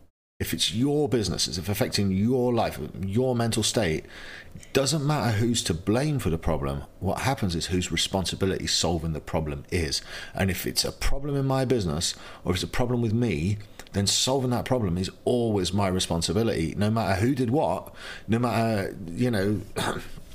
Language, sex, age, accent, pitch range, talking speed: English, male, 40-59, British, 85-115 Hz, 180 wpm